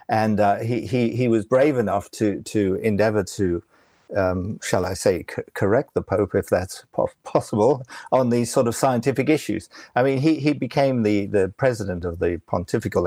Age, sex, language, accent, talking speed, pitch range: 50-69, male, English, British, 190 wpm, 105-140 Hz